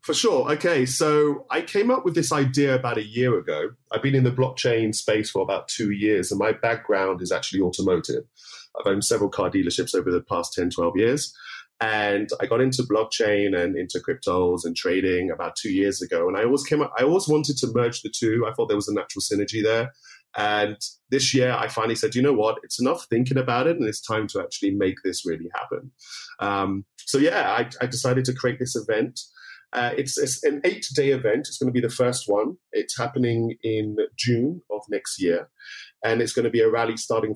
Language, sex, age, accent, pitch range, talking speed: English, male, 30-49, British, 110-150 Hz, 215 wpm